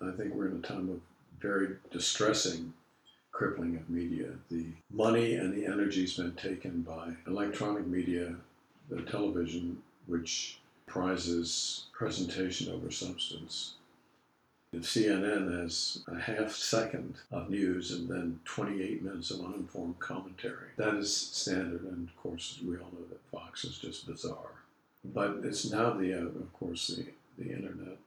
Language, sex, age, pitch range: English, male, 60-79, 85-95 Hz